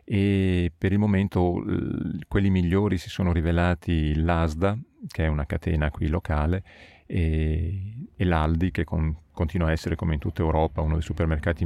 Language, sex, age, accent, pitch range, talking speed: Italian, male, 40-59, native, 80-100 Hz, 155 wpm